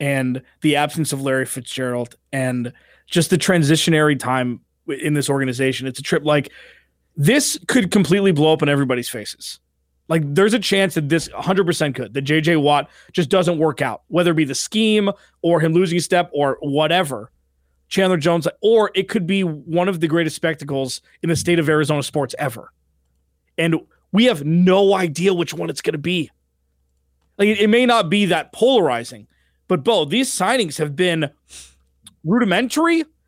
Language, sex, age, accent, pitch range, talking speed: English, male, 20-39, American, 135-195 Hz, 175 wpm